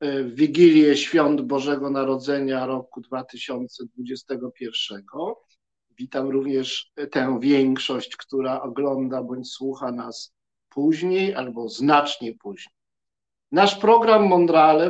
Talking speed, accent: 90 wpm, native